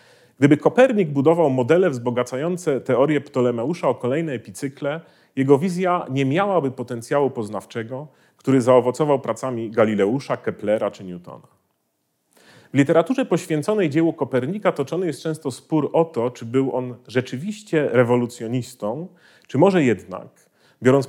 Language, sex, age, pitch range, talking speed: Polish, male, 40-59, 120-165 Hz, 120 wpm